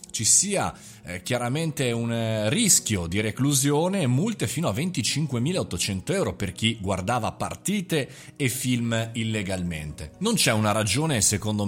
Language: Italian